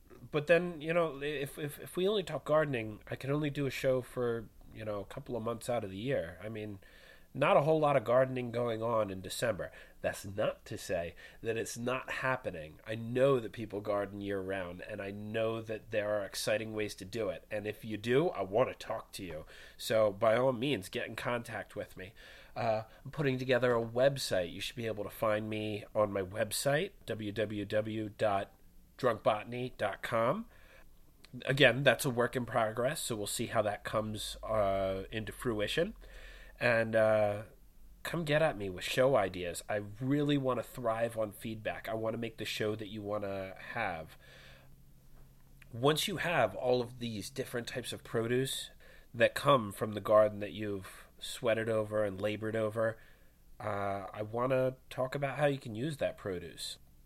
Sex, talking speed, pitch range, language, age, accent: male, 185 wpm, 105-130 Hz, English, 30-49, American